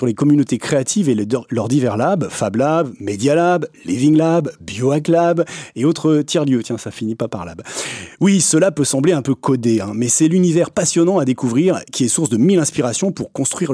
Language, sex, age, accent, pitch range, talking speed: French, male, 30-49, French, 125-170 Hz, 200 wpm